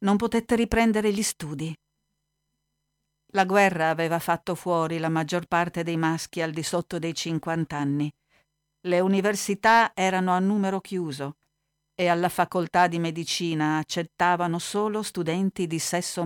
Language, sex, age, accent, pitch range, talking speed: Italian, female, 50-69, native, 150-200 Hz, 135 wpm